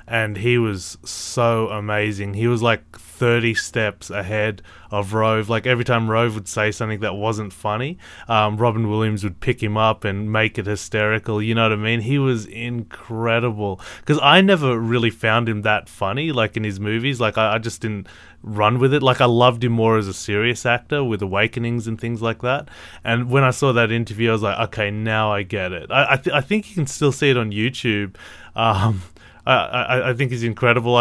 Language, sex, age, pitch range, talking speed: English, male, 20-39, 105-120 Hz, 210 wpm